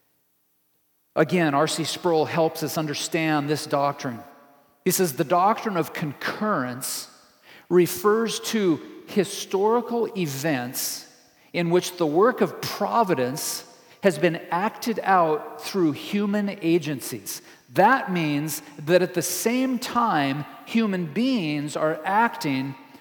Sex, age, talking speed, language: male, 50-69, 110 wpm, English